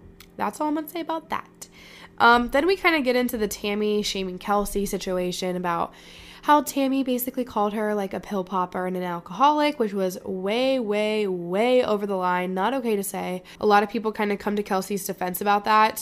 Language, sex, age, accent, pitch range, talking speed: English, female, 10-29, American, 190-235 Hz, 215 wpm